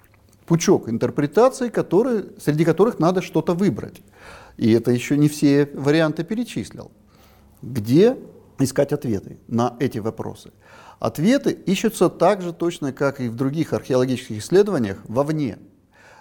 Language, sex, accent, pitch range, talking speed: Russian, male, native, 115-175 Hz, 120 wpm